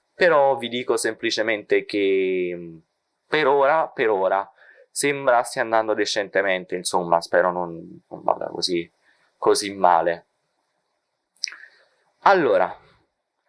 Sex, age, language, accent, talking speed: male, 20-39, Italian, native, 100 wpm